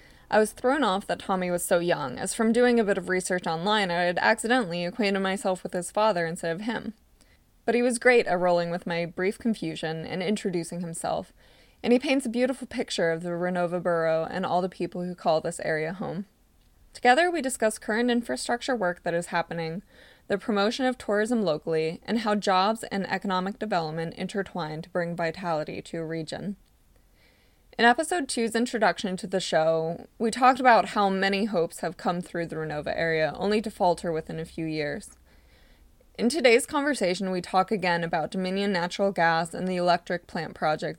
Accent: American